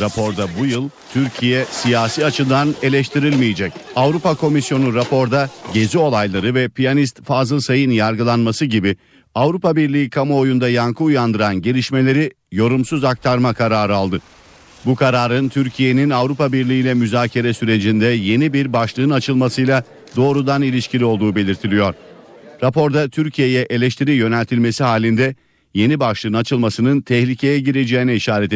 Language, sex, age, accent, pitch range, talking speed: Turkish, male, 50-69, native, 115-135 Hz, 115 wpm